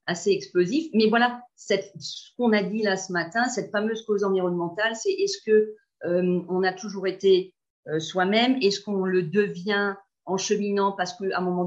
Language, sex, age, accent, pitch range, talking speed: French, female, 40-59, French, 175-220 Hz, 190 wpm